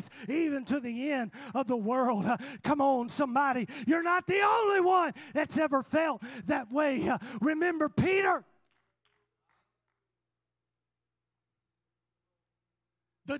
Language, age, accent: English, 40-59, American